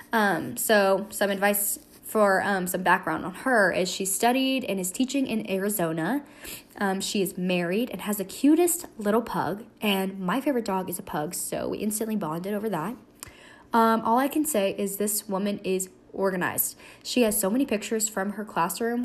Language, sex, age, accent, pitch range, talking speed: English, female, 10-29, American, 195-255 Hz, 185 wpm